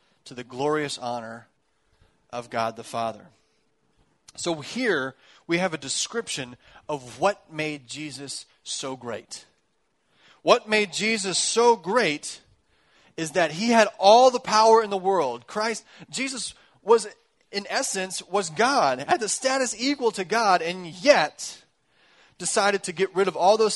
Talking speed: 145 wpm